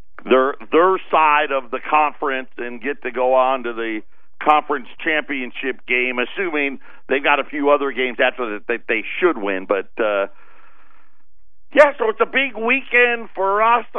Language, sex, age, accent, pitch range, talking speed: English, male, 50-69, American, 150-210 Hz, 165 wpm